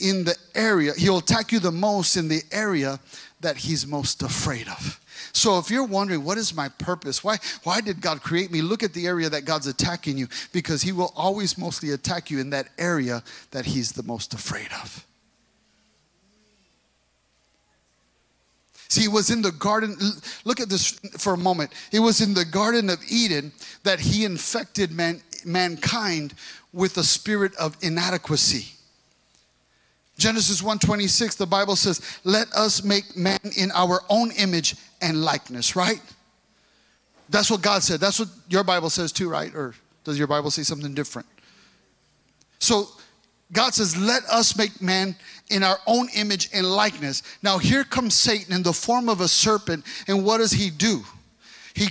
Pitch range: 160-210 Hz